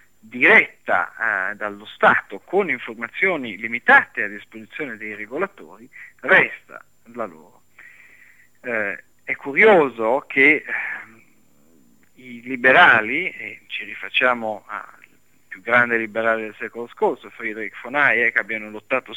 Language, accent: Italian, native